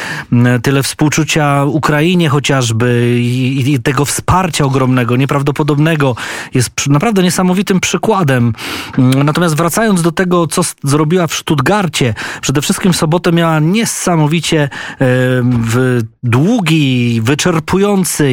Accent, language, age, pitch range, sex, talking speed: native, Polish, 20-39, 125-160 Hz, male, 100 wpm